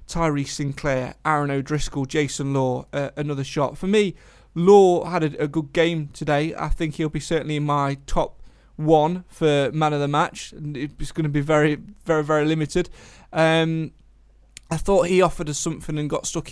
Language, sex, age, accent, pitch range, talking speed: English, male, 30-49, British, 145-170 Hz, 185 wpm